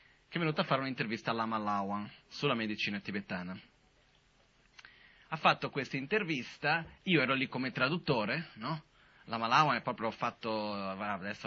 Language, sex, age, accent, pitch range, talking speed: Italian, male, 30-49, native, 120-160 Hz, 135 wpm